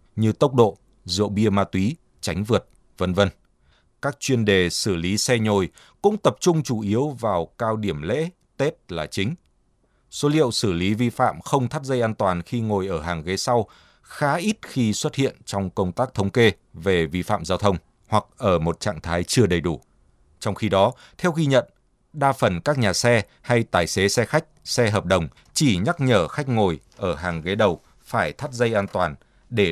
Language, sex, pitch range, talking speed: Vietnamese, male, 100-135 Hz, 210 wpm